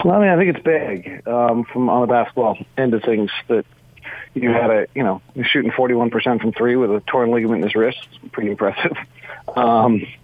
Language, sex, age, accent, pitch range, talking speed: English, male, 40-59, American, 110-130 Hz, 235 wpm